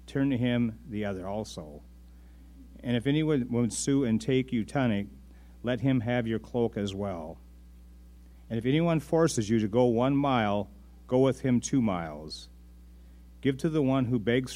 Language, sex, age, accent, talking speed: English, male, 40-59, American, 175 wpm